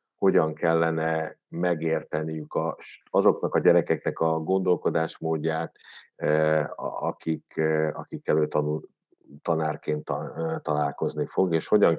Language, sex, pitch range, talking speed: Hungarian, male, 75-85 Hz, 75 wpm